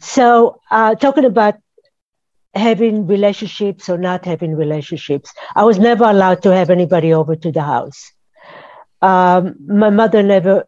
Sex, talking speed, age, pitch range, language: female, 140 wpm, 60-79, 175-225 Hz, English